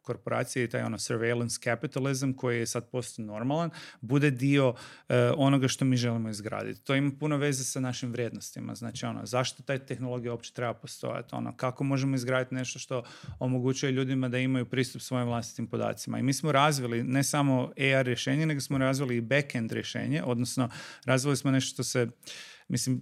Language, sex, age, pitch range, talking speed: Croatian, male, 40-59, 125-145 Hz, 180 wpm